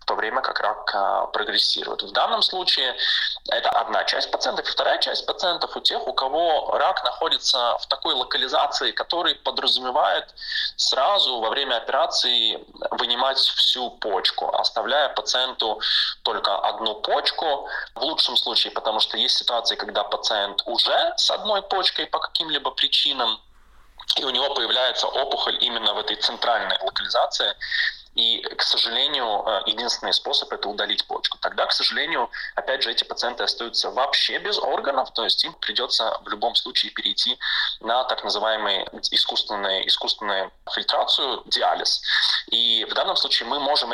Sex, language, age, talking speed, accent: male, Russian, 20-39, 145 wpm, native